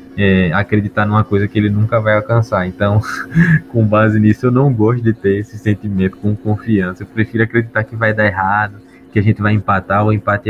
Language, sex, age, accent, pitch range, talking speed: Portuguese, male, 20-39, Brazilian, 105-130 Hz, 205 wpm